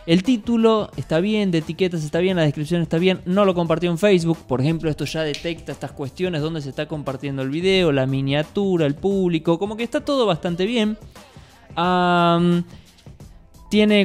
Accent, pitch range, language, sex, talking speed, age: Argentinian, 150-185 Hz, Spanish, male, 175 wpm, 20-39